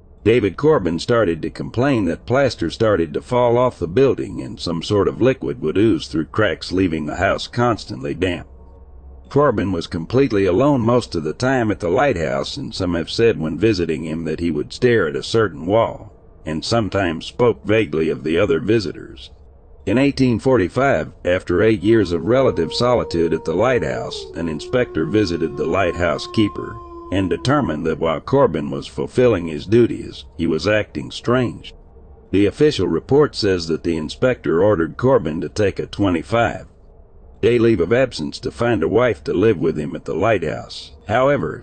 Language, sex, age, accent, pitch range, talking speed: English, male, 60-79, American, 80-115 Hz, 175 wpm